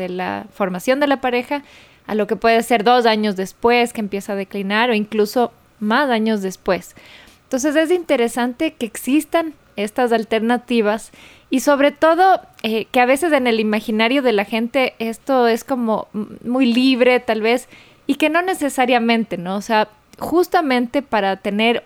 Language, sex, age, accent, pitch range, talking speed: Spanish, female, 20-39, Mexican, 220-275 Hz, 165 wpm